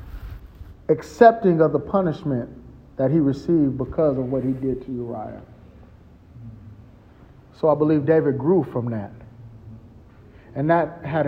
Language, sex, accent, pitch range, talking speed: English, male, American, 115-165 Hz, 130 wpm